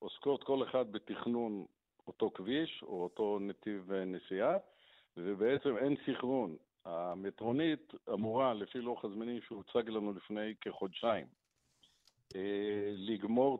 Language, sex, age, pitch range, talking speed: Hebrew, male, 50-69, 105-135 Hz, 105 wpm